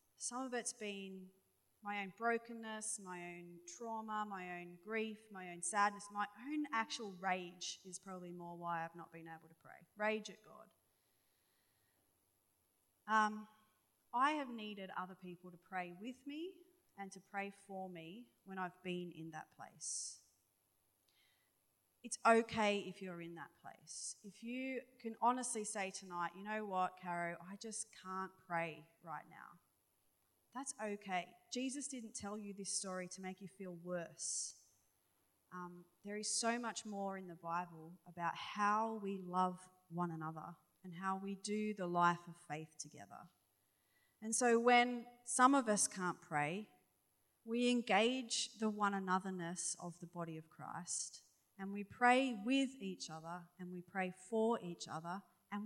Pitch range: 175-220 Hz